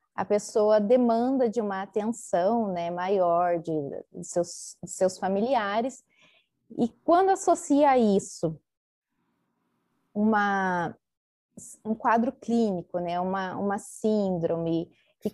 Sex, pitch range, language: female, 190-240 Hz, Portuguese